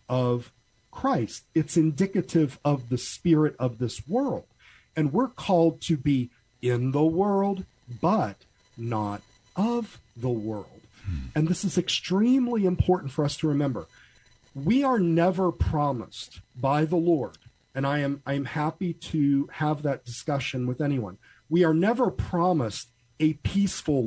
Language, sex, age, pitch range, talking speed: English, male, 40-59, 125-170 Hz, 140 wpm